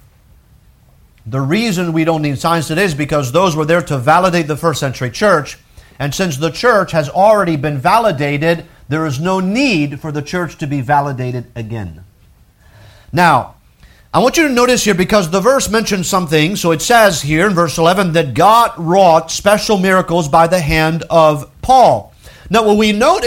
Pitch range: 160-225 Hz